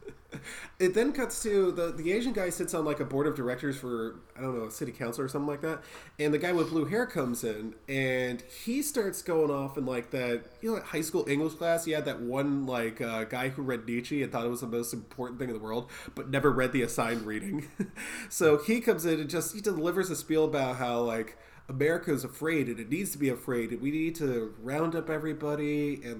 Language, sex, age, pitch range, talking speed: English, male, 20-39, 125-170 Hz, 245 wpm